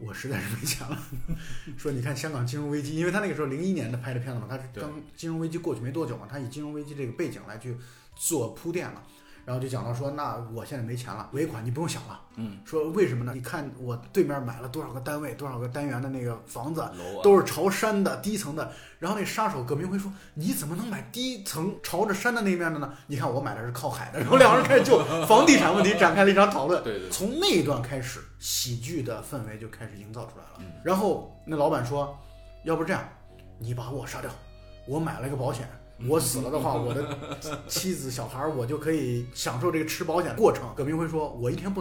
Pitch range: 125-180 Hz